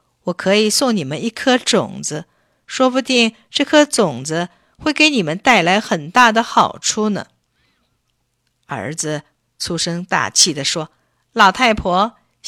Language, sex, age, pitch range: Chinese, female, 50-69, 170-235 Hz